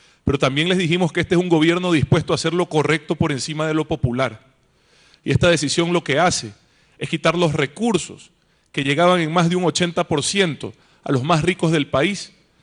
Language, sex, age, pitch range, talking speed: Spanish, male, 30-49, 140-175 Hz, 200 wpm